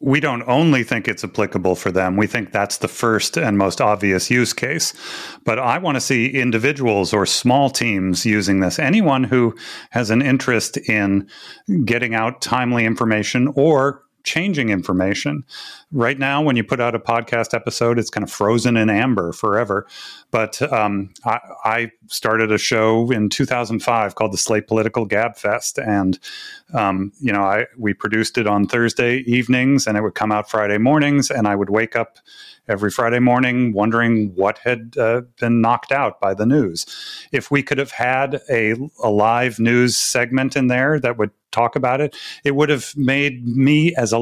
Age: 30-49